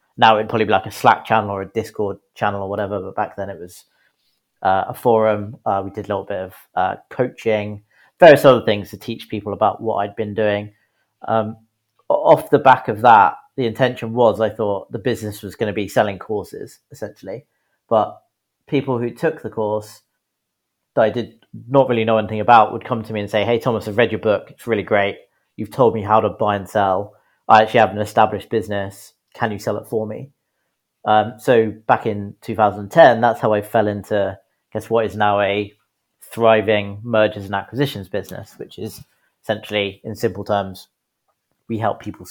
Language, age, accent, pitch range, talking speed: English, 30-49, British, 100-110 Hz, 200 wpm